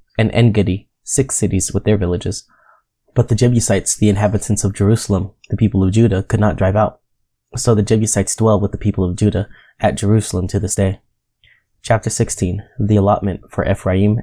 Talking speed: 175 wpm